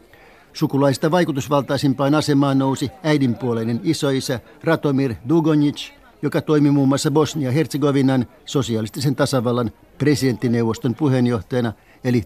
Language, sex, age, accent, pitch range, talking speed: Finnish, male, 60-79, native, 120-150 Hz, 95 wpm